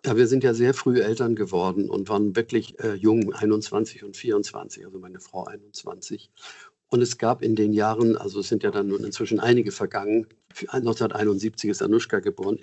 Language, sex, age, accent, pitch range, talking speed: German, male, 50-69, German, 105-120 Hz, 185 wpm